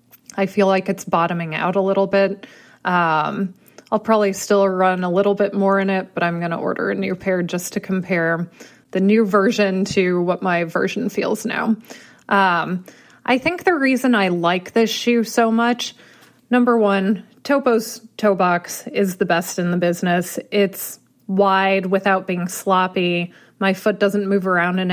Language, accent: English, American